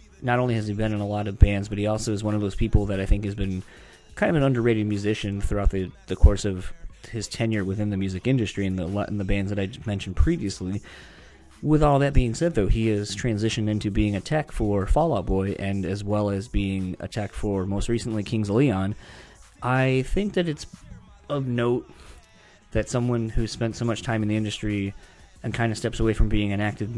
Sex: male